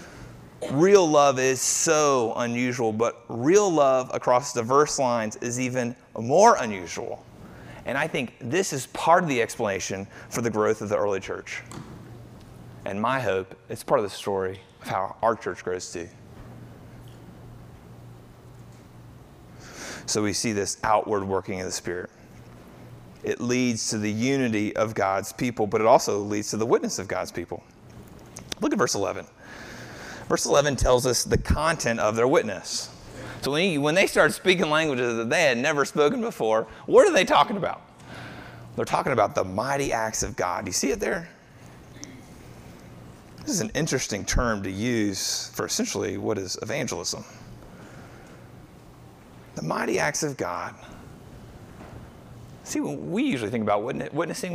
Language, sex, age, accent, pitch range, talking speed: English, male, 30-49, American, 100-135 Hz, 155 wpm